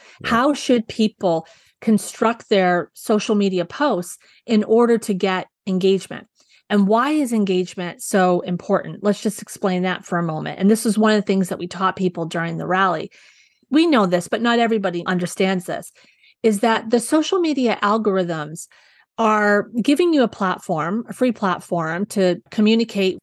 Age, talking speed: 30-49, 165 wpm